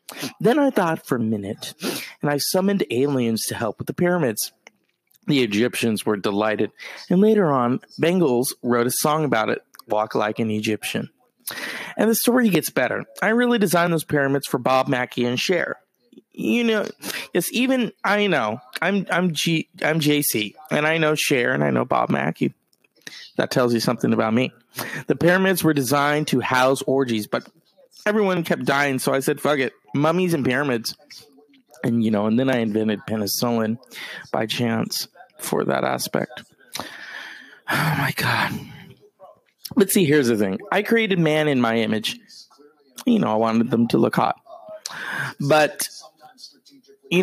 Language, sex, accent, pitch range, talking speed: English, male, American, 120-180 Hz, 165 wpm